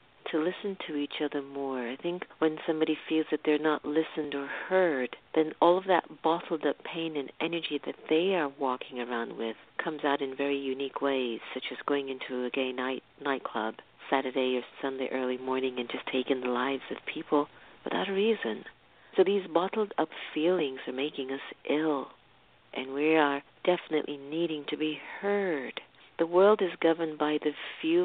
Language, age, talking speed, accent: English, 50-69, 180 wpm, American